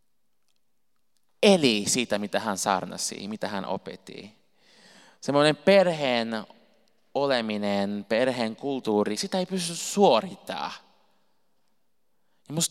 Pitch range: 100-145 Hz